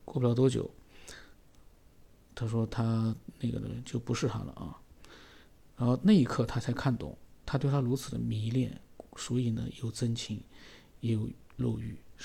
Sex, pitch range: male, 115-135 Hz